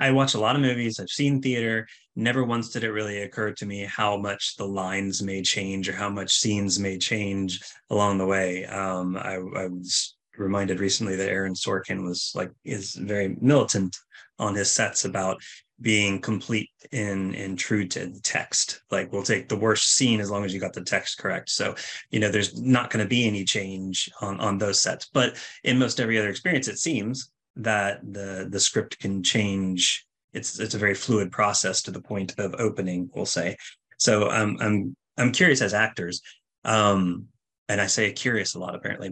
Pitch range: 95-110 Hz